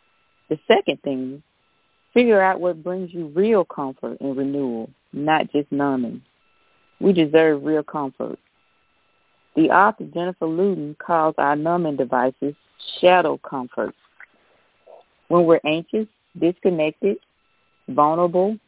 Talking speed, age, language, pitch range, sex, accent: 110 wpm, 40-59, English, 140-180 Hz, female, American